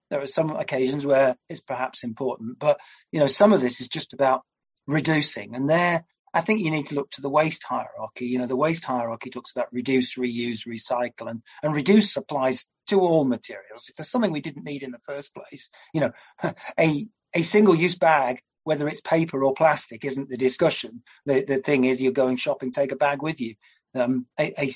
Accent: British